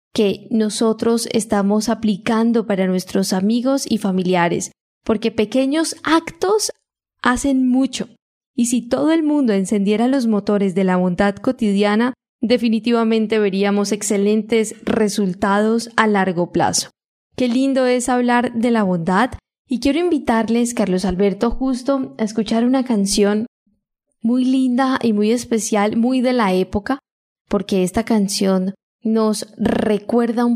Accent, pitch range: Colombian, 200-240 Hz